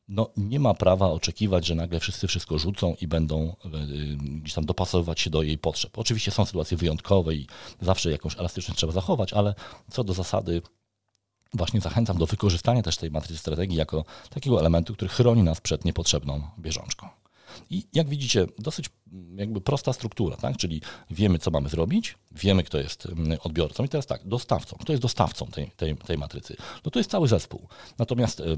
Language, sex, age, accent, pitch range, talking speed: Polish, male, 40-59, native, 80-110 Hz, 175 wpm